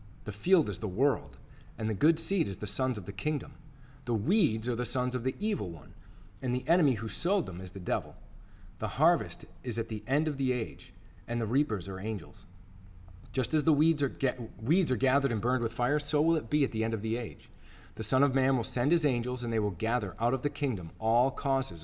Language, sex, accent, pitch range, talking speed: English, male, American, 95-140 Hz, 240 wpm